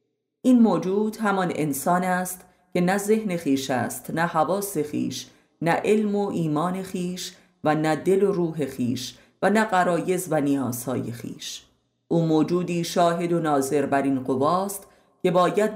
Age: 30-49